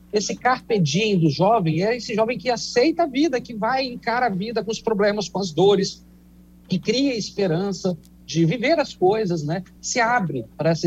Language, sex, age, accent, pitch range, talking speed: Portuguese, male, 50-69, Brazilian, 165-245 Hz, 195 wpm